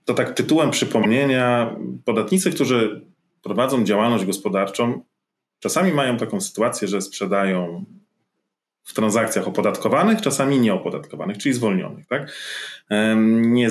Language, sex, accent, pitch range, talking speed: Polish, male, native, 105-140 Hz, 105 wpm